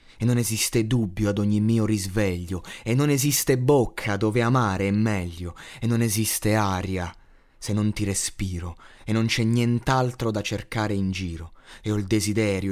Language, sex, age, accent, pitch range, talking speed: Italian, male, 30-49, native, 90-110 Hz, 170 wpm